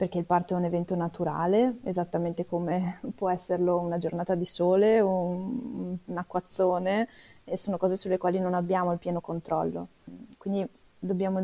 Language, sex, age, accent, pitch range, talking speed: Italian, female, 20-39, native, 175-190 Hz, 155 wpm